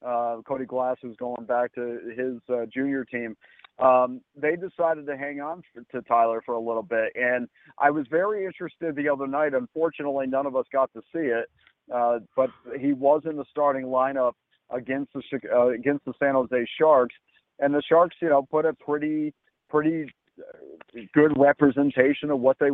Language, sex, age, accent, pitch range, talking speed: English, male, 50-69, American, 120-145 Hz, 180 wpm